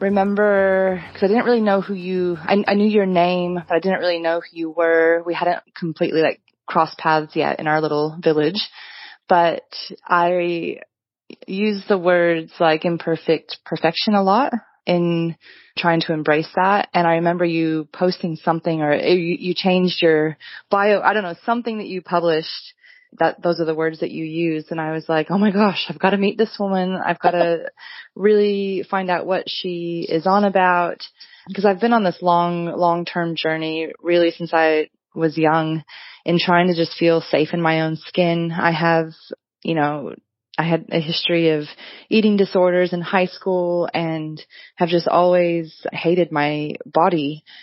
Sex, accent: female, American